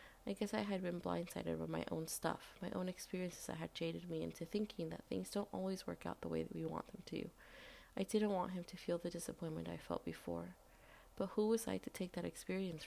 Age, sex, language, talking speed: 30-49, female, English, 240 wpm